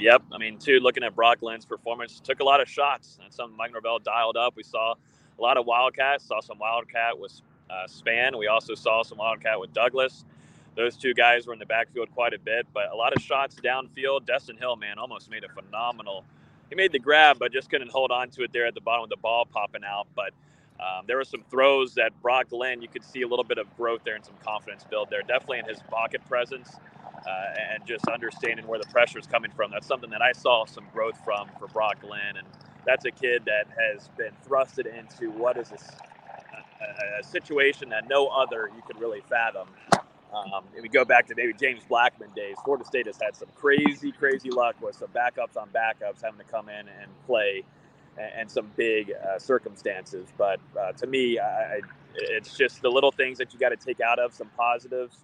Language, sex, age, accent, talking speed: English, male, 30-49, American, 225 wpm